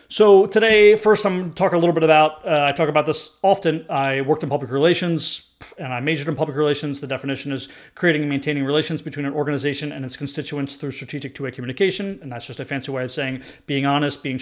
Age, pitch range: 30-49, 135-155 Hz